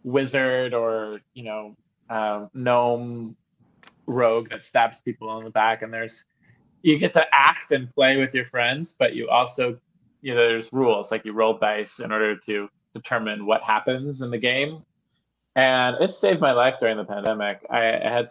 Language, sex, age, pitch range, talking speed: English, male, 20-39, 110-130 Hz, 180 wpm